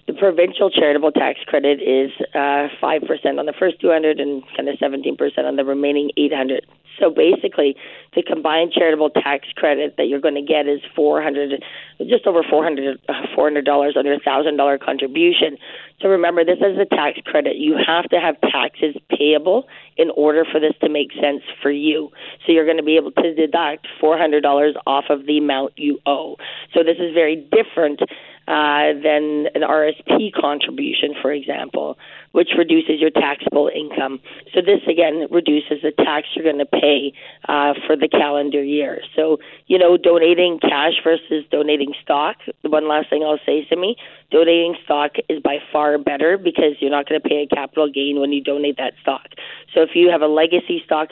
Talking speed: 185 wpm